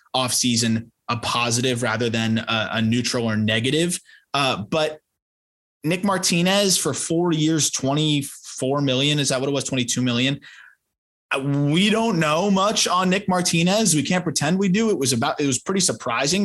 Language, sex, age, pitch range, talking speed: English, male, 20-39, 120-160 Hz, 165 wpm